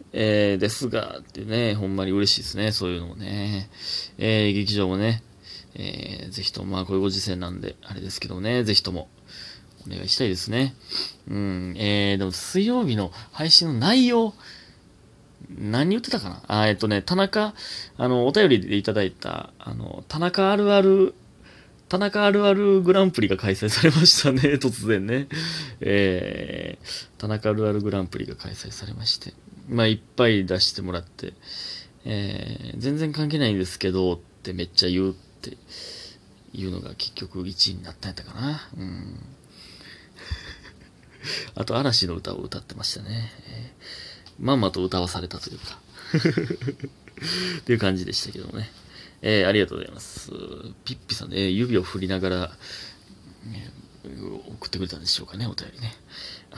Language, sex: Japanese, male